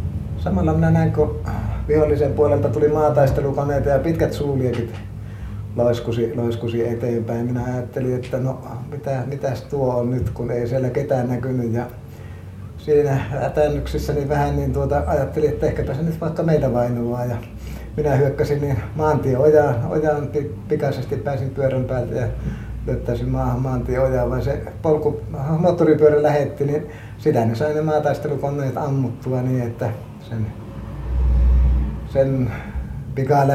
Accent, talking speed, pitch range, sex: native, 125 wpm, 115-140 Hz, male